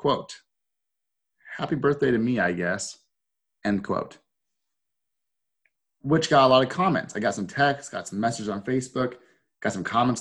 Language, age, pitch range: English, 30-49, 125-175 Hz